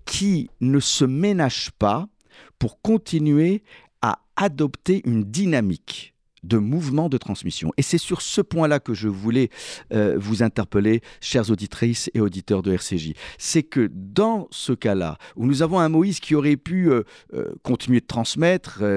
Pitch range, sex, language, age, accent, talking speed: 110-160 Hz, male, French, 50-69, French, 155 wpm